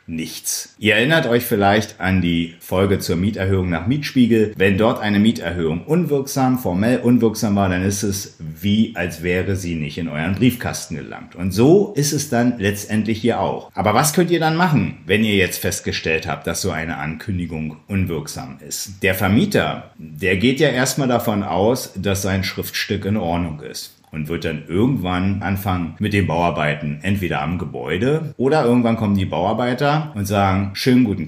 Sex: male